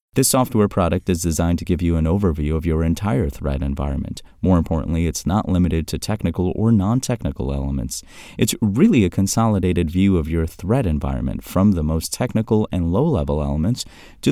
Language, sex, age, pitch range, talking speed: English, male, 30-49, 75-110 Hz, 175 wpm